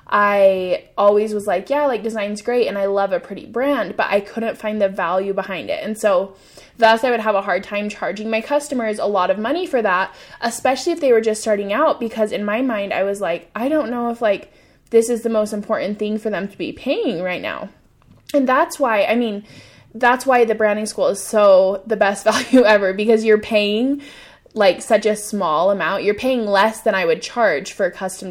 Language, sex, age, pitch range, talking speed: English, female, 10-29, 200-255 Hz, 225 wpm